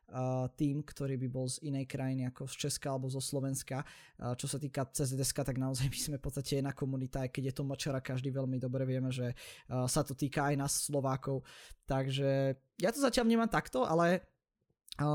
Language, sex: Slovak, male